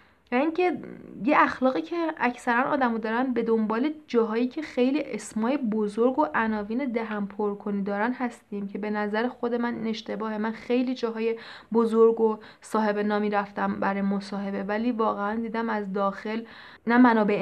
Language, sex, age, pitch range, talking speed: Persian, female, 30-49, 205-240 Hz, 145 wpm